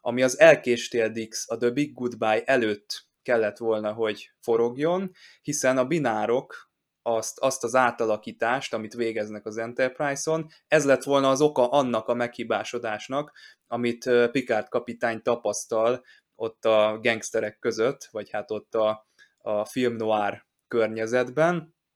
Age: 20-39